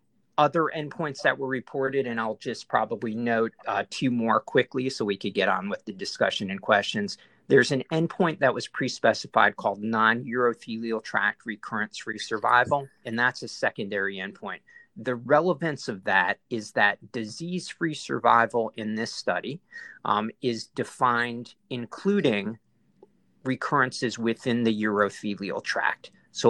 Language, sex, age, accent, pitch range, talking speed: English, male, 40-59, American, 110-135 Hz, 140 wpm